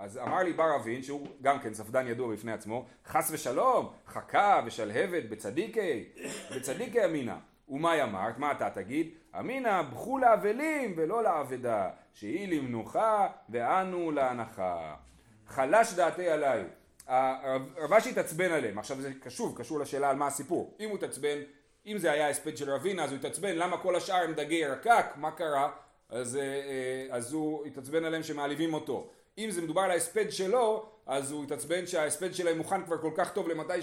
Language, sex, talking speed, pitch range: Hebrew, male, 165 wpm, 140-195 Hz